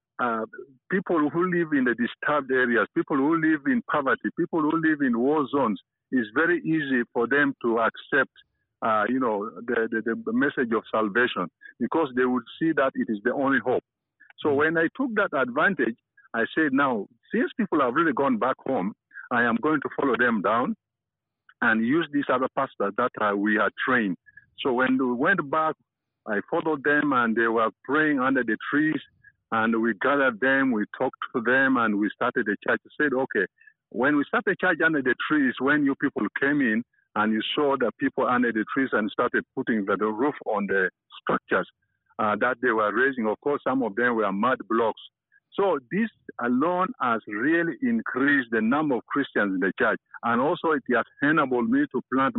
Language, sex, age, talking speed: English, male, 50-69, 195 wpm